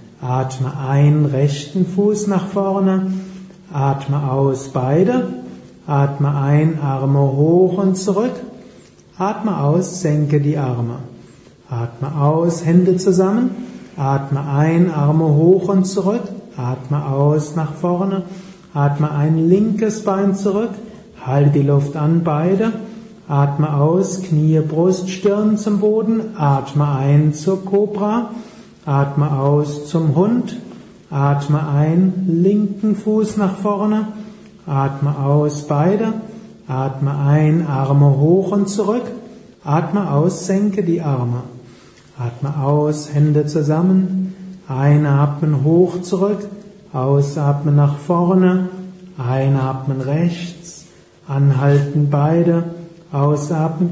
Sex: male